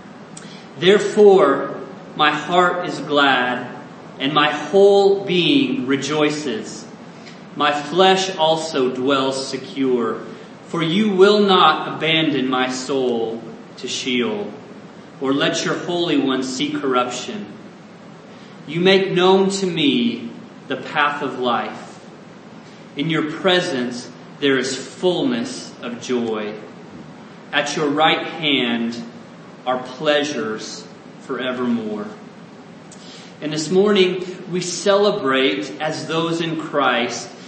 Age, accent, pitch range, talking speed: 30-49, American, 135-190 Hz, 100 wpm